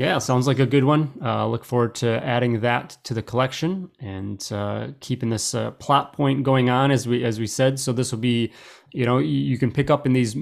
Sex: male